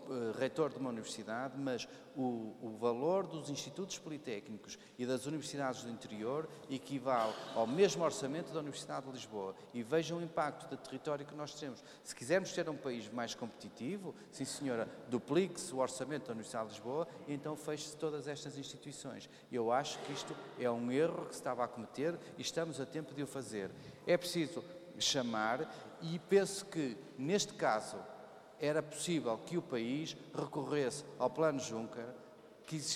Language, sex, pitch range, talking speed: Portuguese, male, 125-155 Hz, 165 wpm